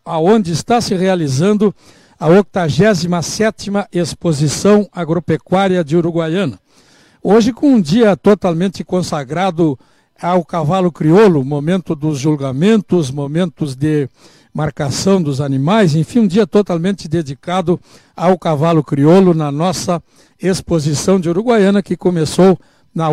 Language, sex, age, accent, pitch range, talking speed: Portuguese, male, 60-79, Brazilian, 155-195 Hz, 110 wpm